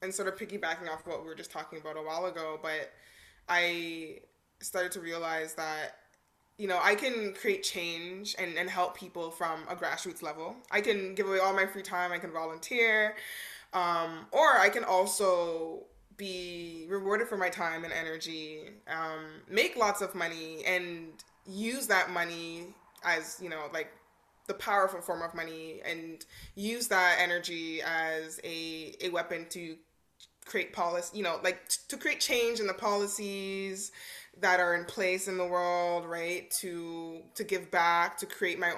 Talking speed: 170 wpm